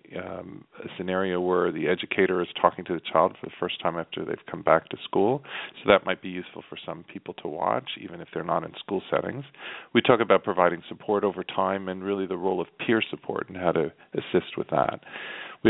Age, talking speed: 40-59, 225 wpm